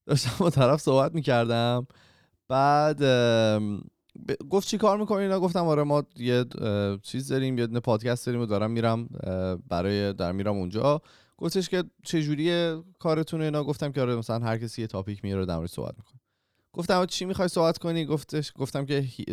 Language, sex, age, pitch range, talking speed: Persian, male, 20-39, 100-145 Hz, 170 wpm